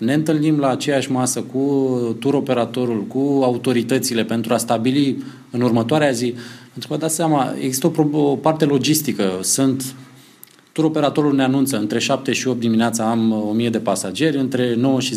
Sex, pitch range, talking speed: male, 115-150 Hz, 160 wpm